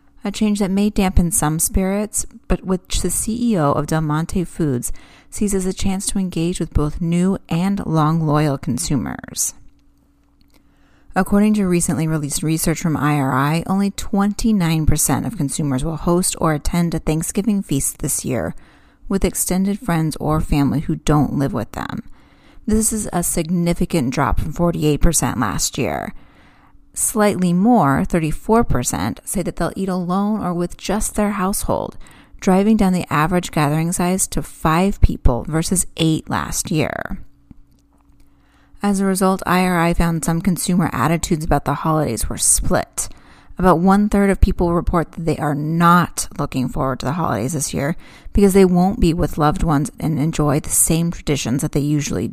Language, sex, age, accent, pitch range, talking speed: English, female, 30-49, American, 150-190 Hz, 155 wpm